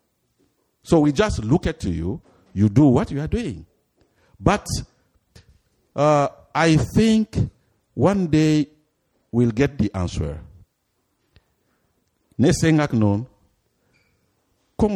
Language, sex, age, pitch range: Korean, male, 50-69, 95-145 Hz